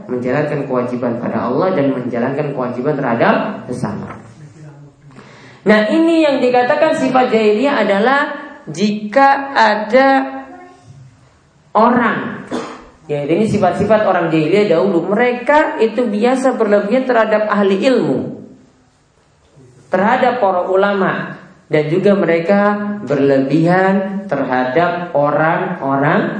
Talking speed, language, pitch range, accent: 95 wpm, Indonesian, 145-220 Hz, native